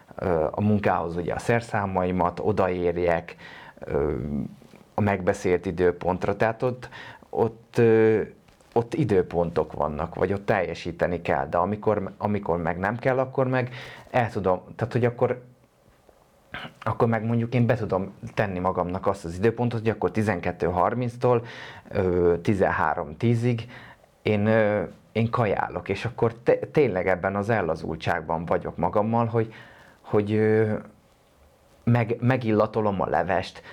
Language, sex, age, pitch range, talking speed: Hungarian, male, 30-49, 95-120 Hz, 125 wpm